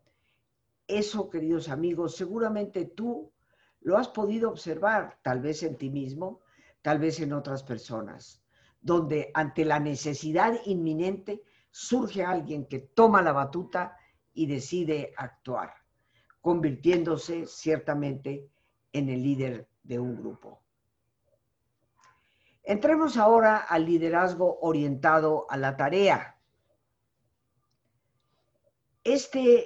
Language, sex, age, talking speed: Spanish, female, 50-69, 100 wpm